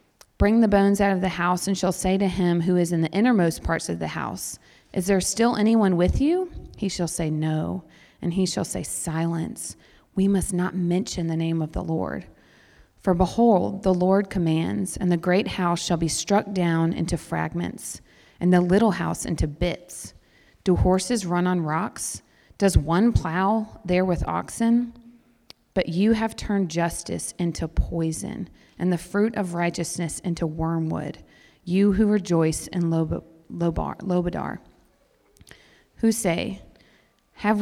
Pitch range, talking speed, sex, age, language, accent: 165-200 Hz, 160 wpm, female, 30-49, English, American